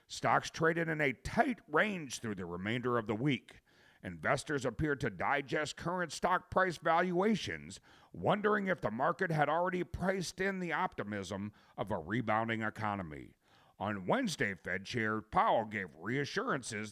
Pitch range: 115-180 Hz